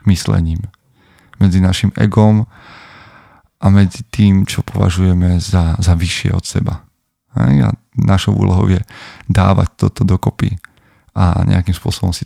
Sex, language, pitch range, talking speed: male, Slovak, 90-110 Hz, 120 wpm